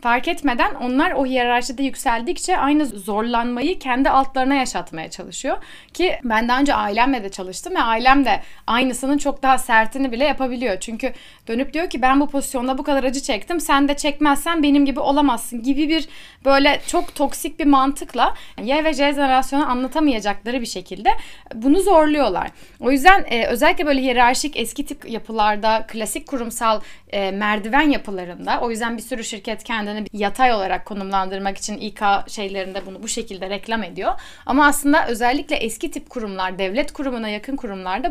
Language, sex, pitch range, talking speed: Turkish, female, 220-285 Hz, 160 wpm